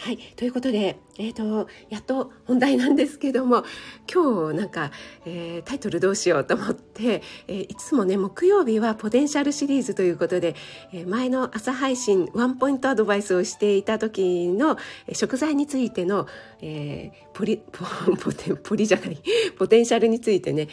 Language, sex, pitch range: Japanese, female, 175-265 Hz